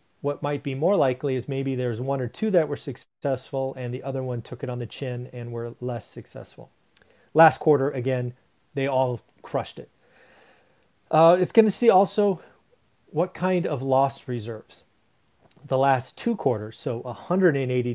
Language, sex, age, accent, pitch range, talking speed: English, male, 40-59, American, 125-150 Hz, 170 wpm